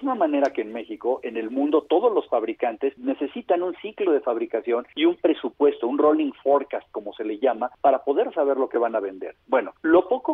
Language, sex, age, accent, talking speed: Spanish, male, 50-69, Mexican, 210 wpm